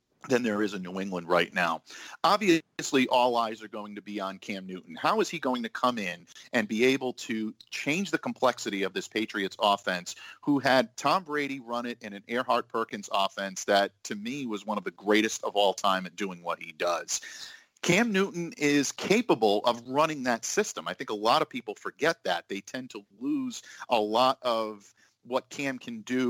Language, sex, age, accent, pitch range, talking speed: English, male, 40-59, American, 100-135 Hz, 205 wpm